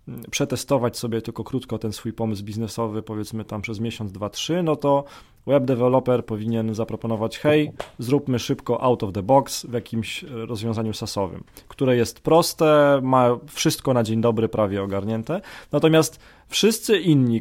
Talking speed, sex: 150 wpm, male